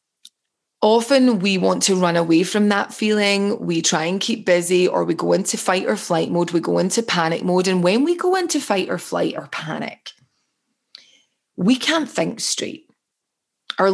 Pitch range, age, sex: 175-220 Hz, 20-39, female